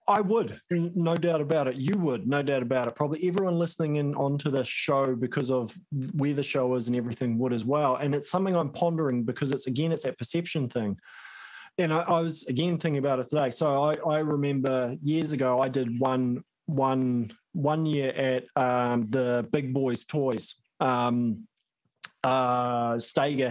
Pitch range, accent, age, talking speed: 125-160 Hz, Australian, 20-39, 185 wpm